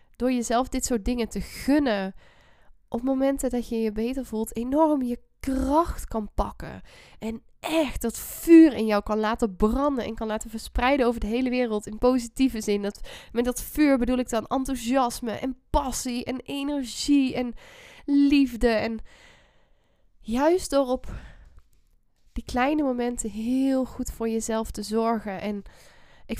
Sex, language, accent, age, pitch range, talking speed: female, Dutch, Dutch, 10-29, 210-255 Hz, 155 wpm